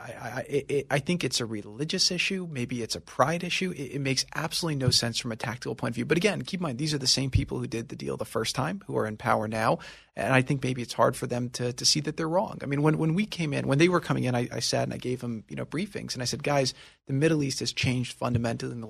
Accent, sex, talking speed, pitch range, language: American, male, 305 wpm, 120-155 Hz, English